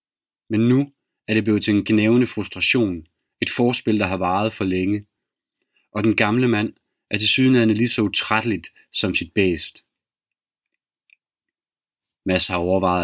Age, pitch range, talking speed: 30-49, 95-115 Hz, 145 wpm